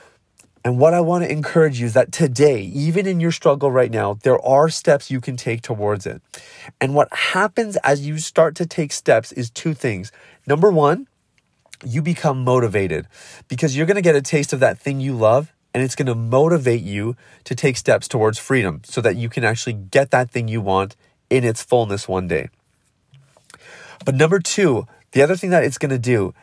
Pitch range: 120-155 Hz